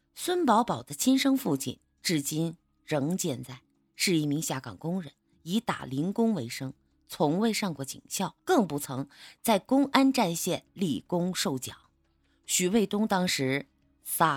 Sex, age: female, 20-39